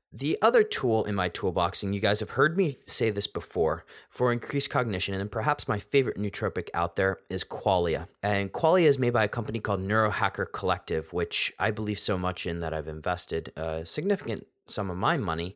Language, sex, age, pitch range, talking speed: English, male, 30-49, 95-135 Hz, 195 wpm